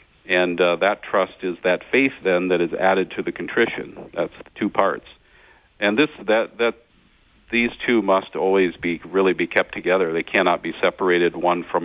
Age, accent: 50-69, American